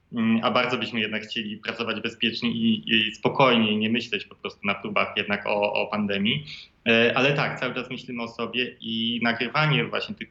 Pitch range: 110-125 Hz